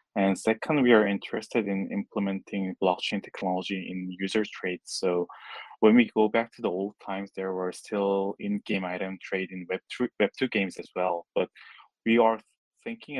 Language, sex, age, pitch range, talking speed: Russian, male, 20-39, 95-105 Hz, 175 wpm